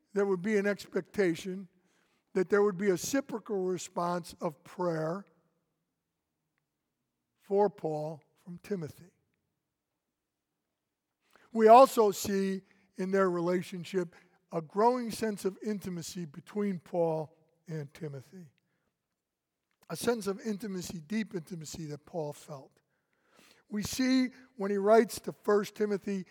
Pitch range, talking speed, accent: 165-210 Hz, 115 wpm, American